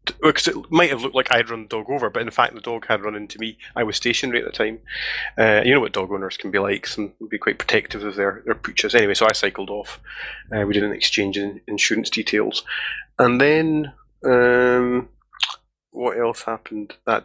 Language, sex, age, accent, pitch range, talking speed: English, male, 30-49, British, 105-135 Hz, 225 wpm